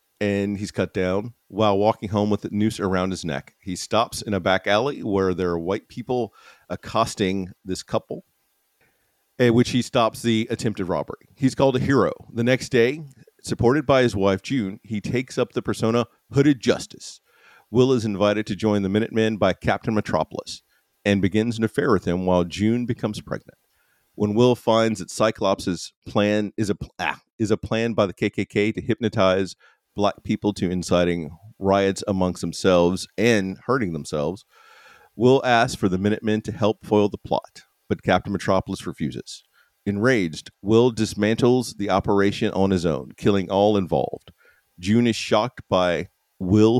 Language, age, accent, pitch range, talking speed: English, 40-59, American, 95-115 Hz, 170 wpm